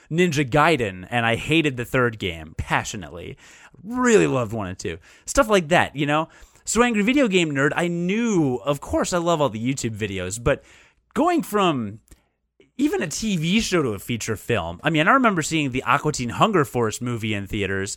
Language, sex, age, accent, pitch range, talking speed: English, male, 30-49, American, 115-170 Hz, 195 wpm